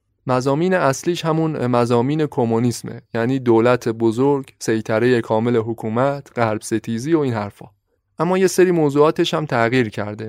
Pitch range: 115-155 Hz